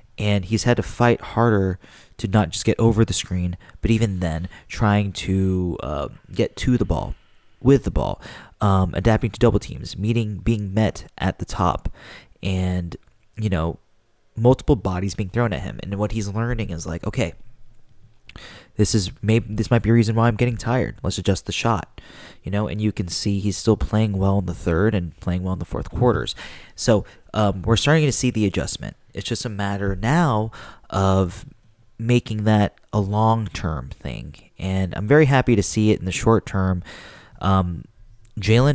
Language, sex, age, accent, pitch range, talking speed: English, male, 20-39, American, 95-115 Hz, 185 wpm